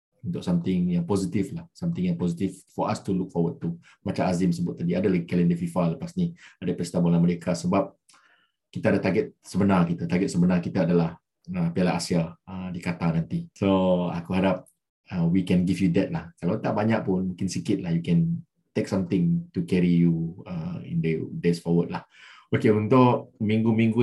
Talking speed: 195 wpm